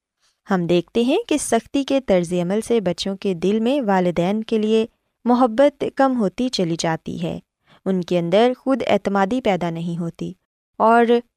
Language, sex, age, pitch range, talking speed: Urdu, female, 20-39, 180-260 Hz, 165 wpm